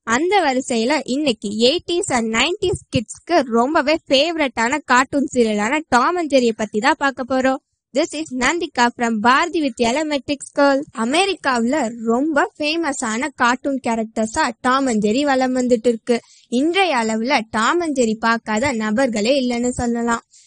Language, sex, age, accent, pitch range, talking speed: Tamil, female, 20-39, native, 235-305 Hz, 100 wpm